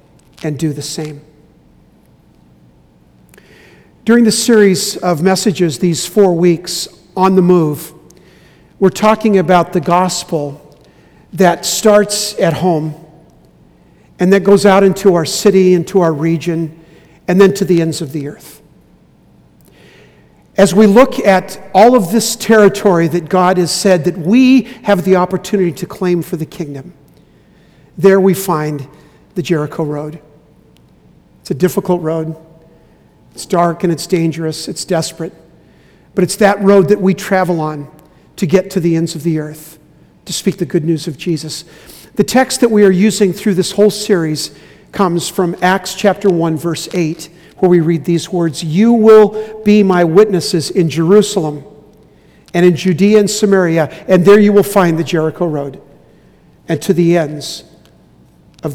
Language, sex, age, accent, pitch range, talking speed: English, male, 50-69, American, 160-195 Hz, 155 wpm